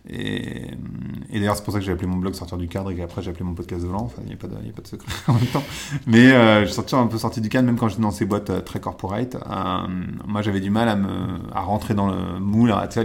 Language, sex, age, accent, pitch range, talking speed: French, male, 30-49, French, 95-115 Hz, 300 wpm